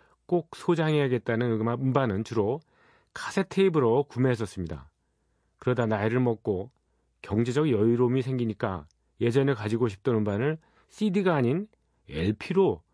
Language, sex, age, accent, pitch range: Korean, male, 40-59, native, 105-140 Hz